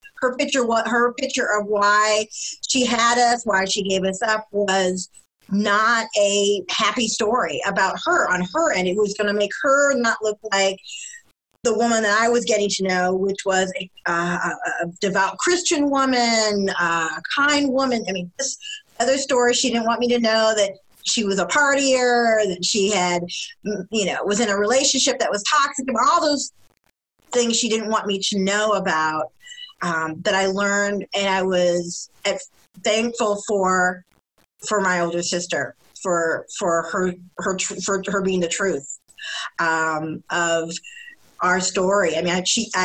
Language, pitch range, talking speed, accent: English, 185-235 Hz, 170 wpm, American